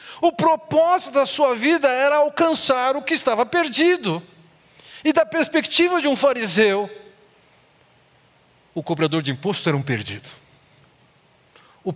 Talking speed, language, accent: 125 wpm, Portuguese, Brazilian